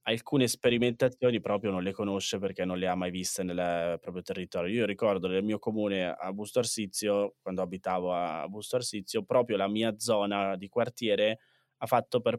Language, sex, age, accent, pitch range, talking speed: Italian, male, 20-39, native, 100-120 Hz, 180 wpm